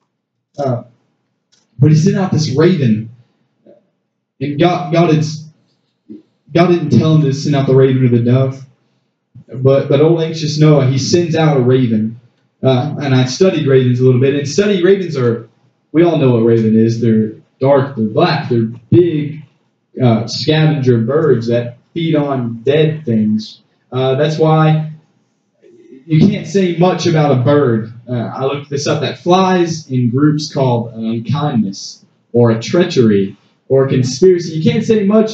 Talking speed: 165 wpm